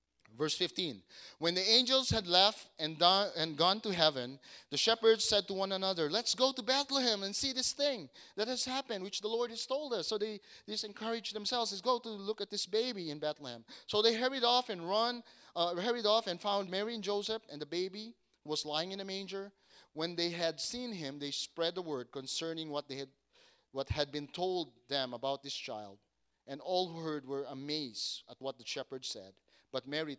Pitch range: 120-200 Hz